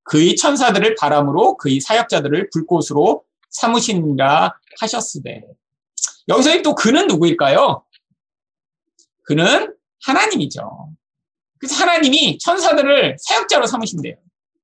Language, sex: Korean, male